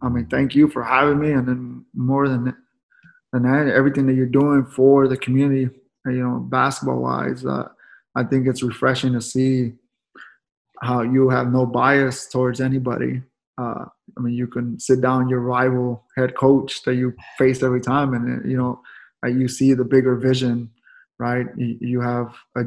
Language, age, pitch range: English, 20-39, 125-135 Hz